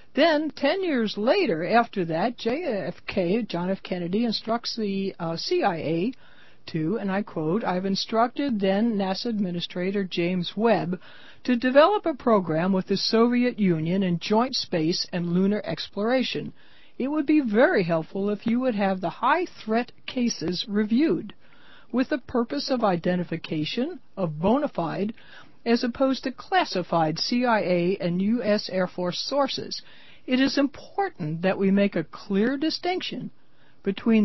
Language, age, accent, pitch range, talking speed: English, 60-79, American, 185-260 Hz, 140 wpm